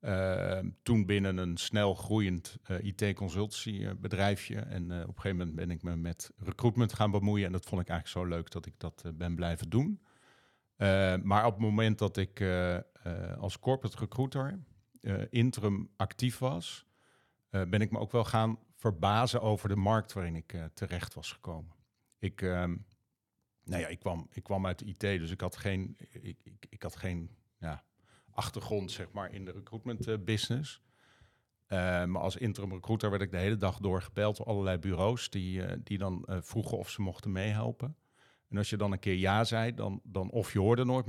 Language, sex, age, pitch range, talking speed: Dutch, male, 50-69, 95-115 Hz, 185 wpm